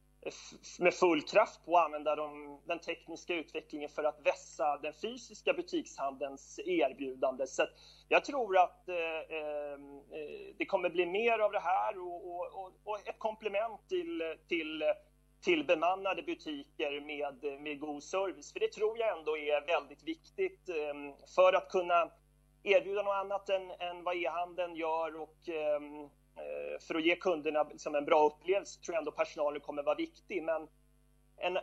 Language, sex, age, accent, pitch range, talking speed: English, male, 30-49, Swedish, 150-230 Hz, 155 wpm